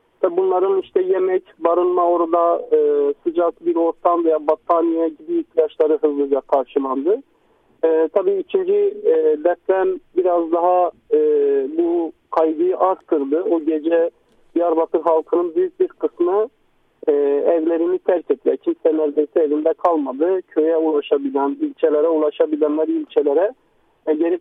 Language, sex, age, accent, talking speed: Turkish, male, 50-69, native, 120 wpm